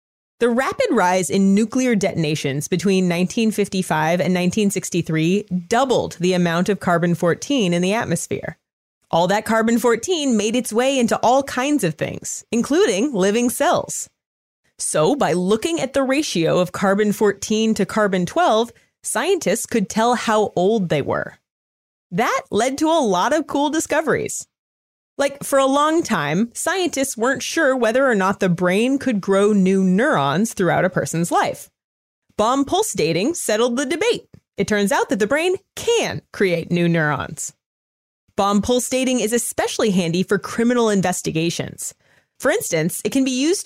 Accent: American